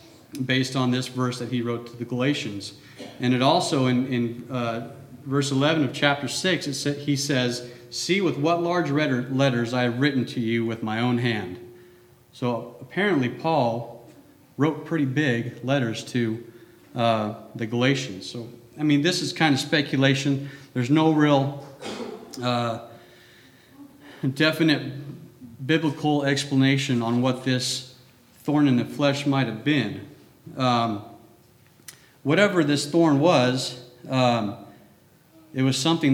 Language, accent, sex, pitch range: English, American, male, 120-145 Hz